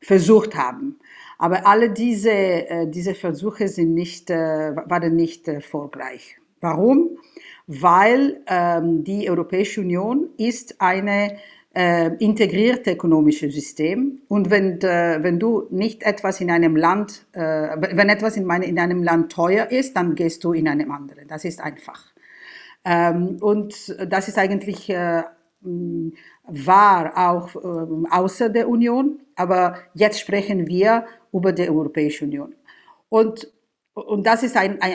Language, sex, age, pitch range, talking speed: English, female, 50-69, 165-210 Hz, 140 wpm